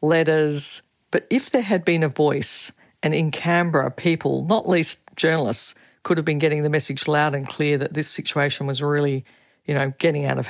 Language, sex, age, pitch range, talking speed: English, female, 50-69, 140-160 Hz, 195 wpm